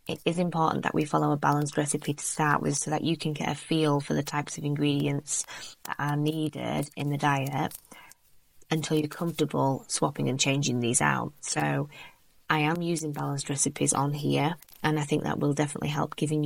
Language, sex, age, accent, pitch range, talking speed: English, female, 20-39, British, 140-155 Hz, 195 wpm